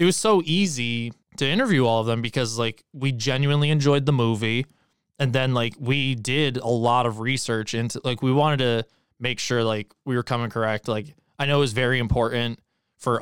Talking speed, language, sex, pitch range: 205 wpm, English, male, 110-130 Hz